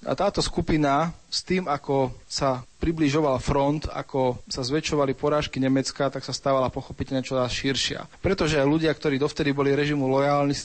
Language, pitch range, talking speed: Slovak, 130-145 Hz, 170 wpm